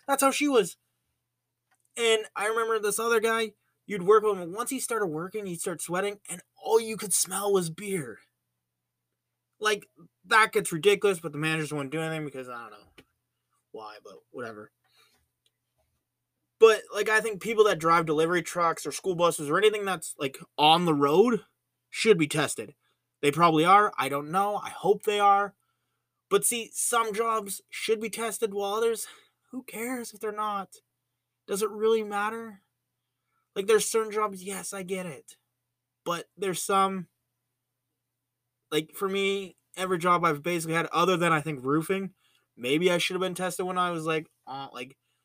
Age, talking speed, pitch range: 20-39, 175 wpm, 145-215 Hz